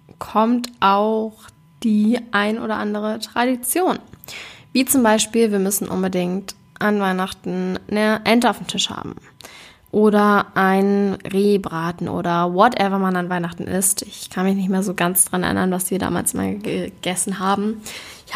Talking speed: 150 wpm